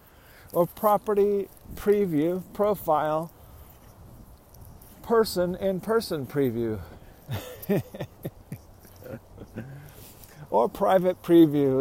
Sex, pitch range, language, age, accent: male, 105-150 Hz, English, 50-69, American